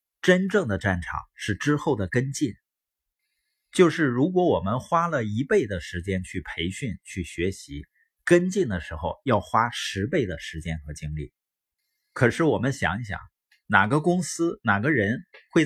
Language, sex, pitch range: Chinese, male, 90-145 Hz